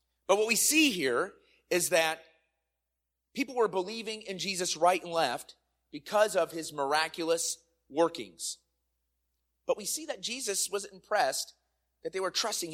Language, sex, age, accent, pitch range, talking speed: English, male, 30-49, American, 160-230 Hz, 145 wpm